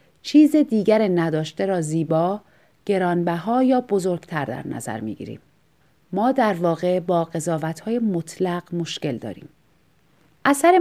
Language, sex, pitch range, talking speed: Persian, female, 165-245 Hz, 115 wpm